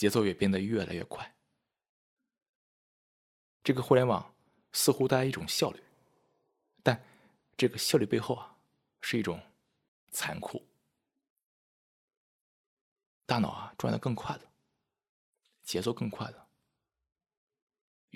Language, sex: Chinese, male